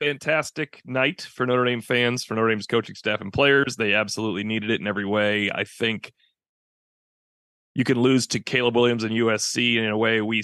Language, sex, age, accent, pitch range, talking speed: English, male, 30-49, American, 115-150 Hz, 195 wpm